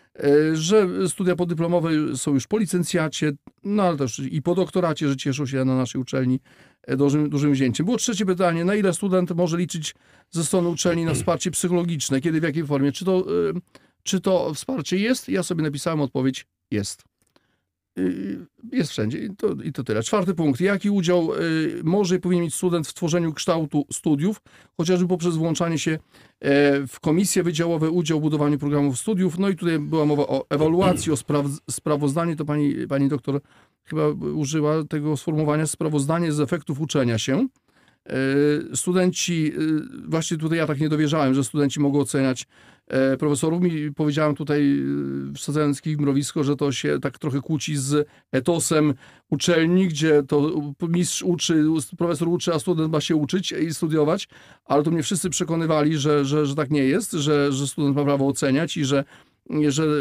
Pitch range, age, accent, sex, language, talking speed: 145-175 Hz, 40-59, native, male, Polish, 160 wpm